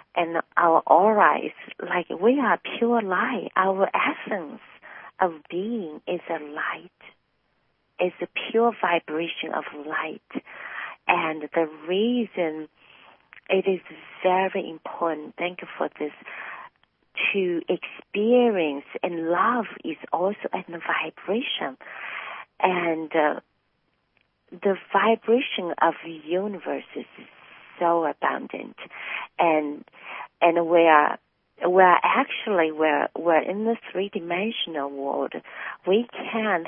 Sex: female